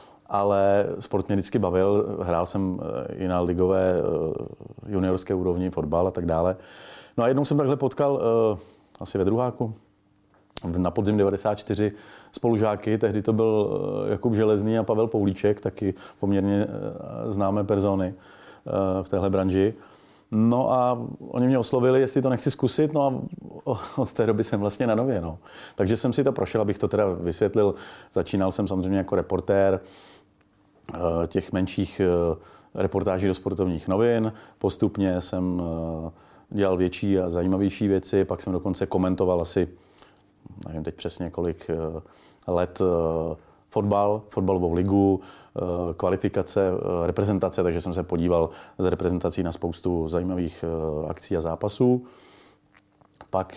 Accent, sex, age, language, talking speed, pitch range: native, male, 30-49, Czech, 130 wpm, 90-110 Hz